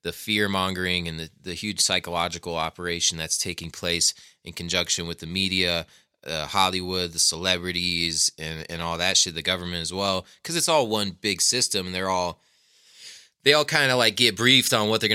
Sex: male